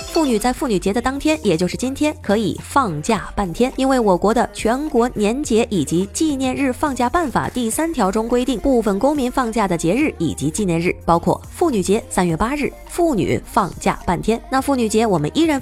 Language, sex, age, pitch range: Chinese, female, 20-39, 185-270 Hz